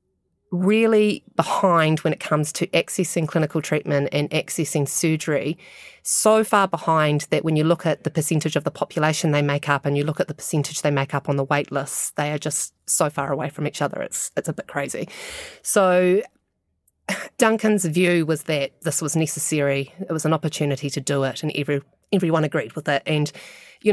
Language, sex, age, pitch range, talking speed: English, female, 30-49, 140-165 Hz, 195 wpm